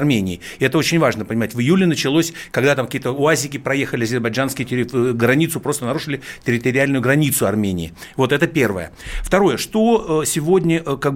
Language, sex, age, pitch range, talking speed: Russian, male, 60-79, 125-160 Hz, 150 wpm